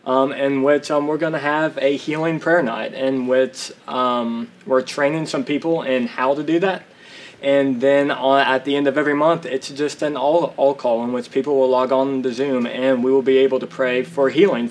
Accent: American